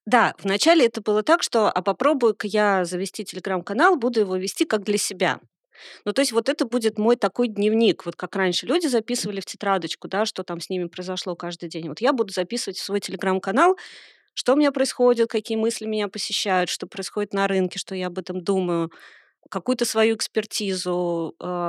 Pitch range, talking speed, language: 185-225 Hz, 190 wpm, Russian